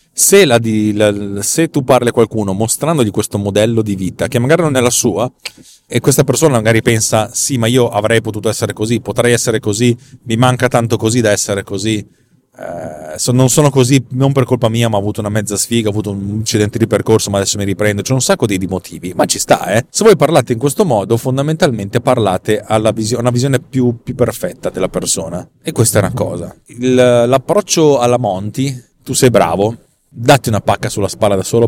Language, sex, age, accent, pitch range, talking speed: Italian, male, 30-49, native, 105-130 Hz, 210 wpm